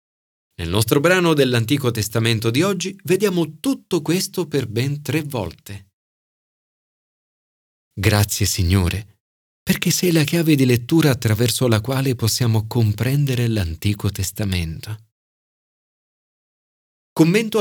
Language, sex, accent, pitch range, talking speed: Italian, male, native, 105-150 Hz, 100 wpm